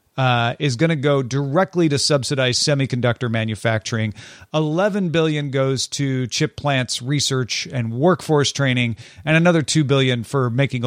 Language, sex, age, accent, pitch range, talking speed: English, male, 40-59, American, 120-155 Hz, 145 wpm